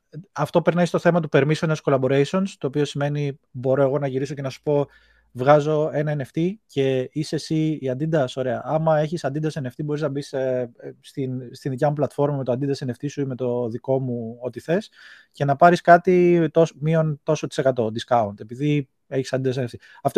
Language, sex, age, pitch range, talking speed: Greek, male, 20-39, 130-155 Hz, 190 wpm